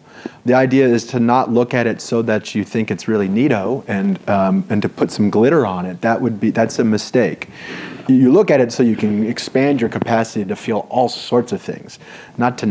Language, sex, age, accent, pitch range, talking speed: English, male, 30-49, American, 105-125 Hz, 225 wpm